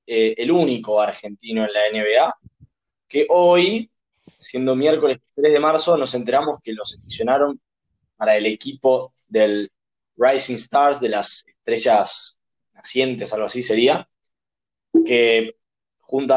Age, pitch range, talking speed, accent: 20-39, 110-155 Hz, 125 wpm, Argentinian